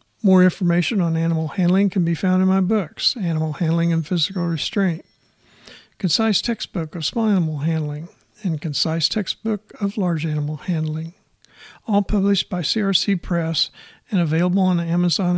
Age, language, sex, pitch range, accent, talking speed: 50-69, English, male, 160-195 Hz, American, 150 wpm